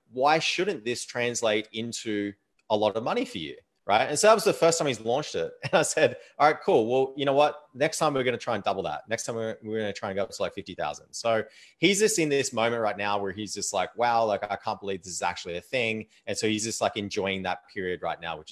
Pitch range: 110-155 Hz